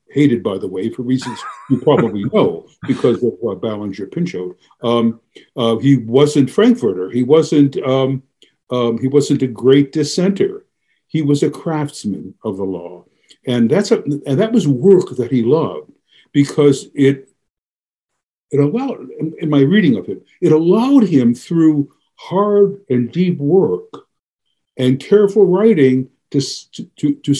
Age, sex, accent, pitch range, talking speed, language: 60-79, male, American, 130-180 Hz, 150 wpm, English